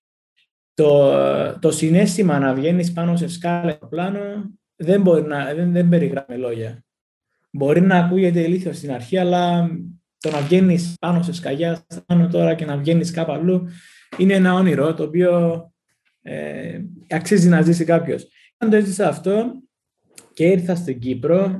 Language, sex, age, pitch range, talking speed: Greek, male, 20-39, 145-190 Hz, 140 wpm